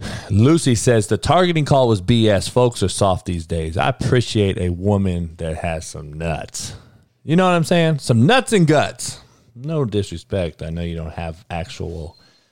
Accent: American